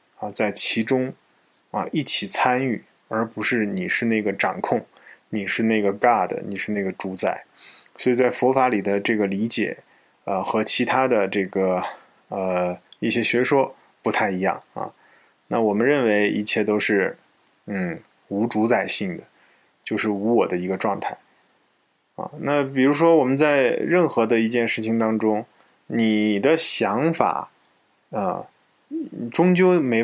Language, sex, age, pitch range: Chinese, male, 20-39, 105-125 Hz